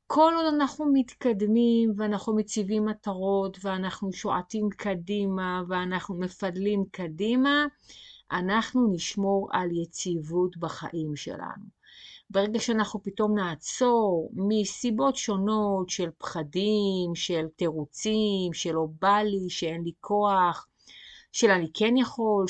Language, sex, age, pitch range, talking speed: Hebrew, female, 30-49, 170-215 Hz, 105 wpm